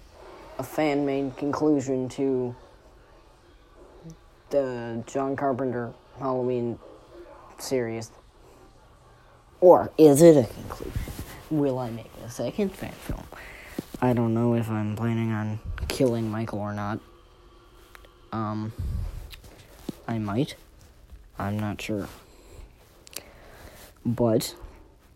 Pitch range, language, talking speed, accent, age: 110-130 Hz, English, 90 wpm, American, 40-59